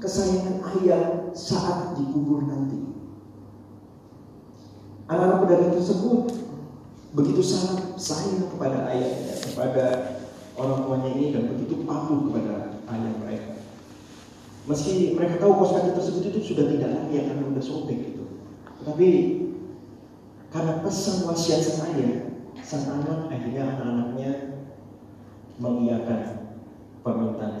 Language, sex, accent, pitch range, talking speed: Indonesian, male, native, 135-185 Hz, 100 wpm